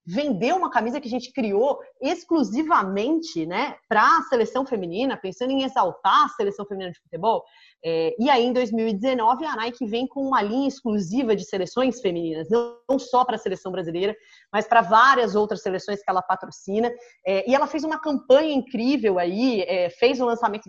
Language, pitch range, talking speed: Portuguese, 205-285 Hz, 170 wpm